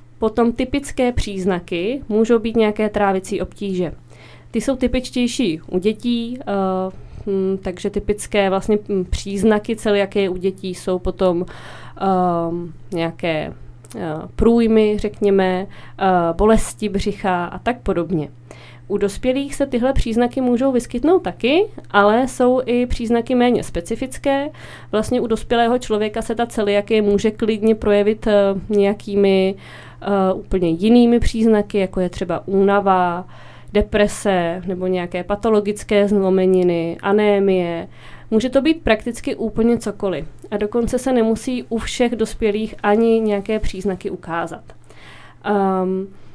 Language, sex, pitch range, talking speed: Czech, female, 190-235 Hz, 110 wpm